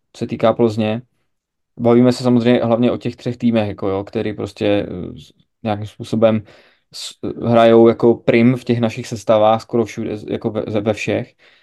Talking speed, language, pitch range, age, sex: 165 wpm, Czech, 110-125 Hz, 20-39, male